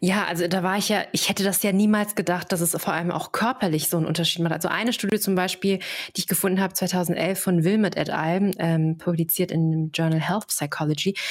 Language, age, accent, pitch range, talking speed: German, 20-39, German, 165-210 Hz, 230 wpm